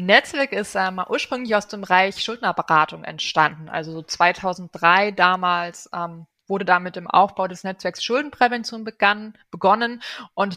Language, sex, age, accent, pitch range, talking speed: German, female, 20-39, German, 175-205 Hz, 140 wpm